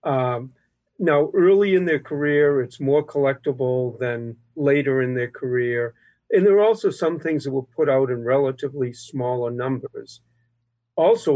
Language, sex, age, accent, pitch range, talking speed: English, male, 50-69, American, 125-150 Hz, 155 wpm